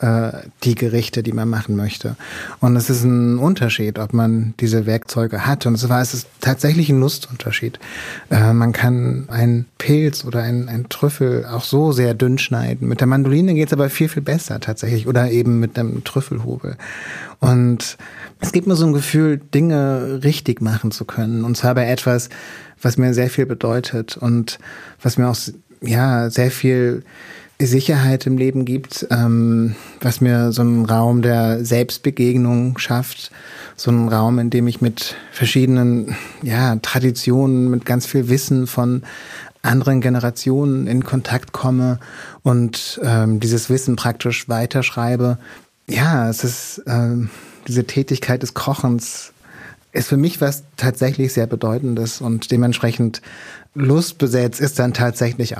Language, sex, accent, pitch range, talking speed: German, male, German, 115-130 Hz, 155 wpm